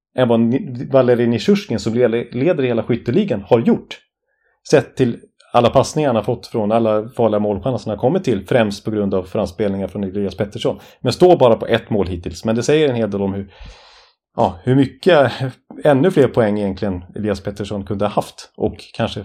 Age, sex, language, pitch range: 30-49, male, Swedish, 100-125 Hz